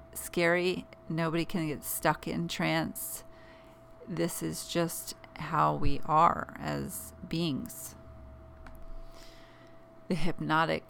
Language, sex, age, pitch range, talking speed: English, female, 40-59, 145-190 Hz, 95 wpm